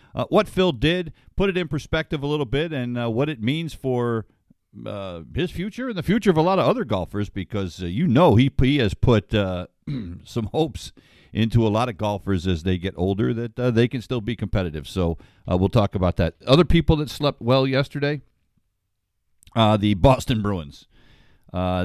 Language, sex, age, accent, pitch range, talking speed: English, male, 50-69, American, 90-125 Hz, 200 wpm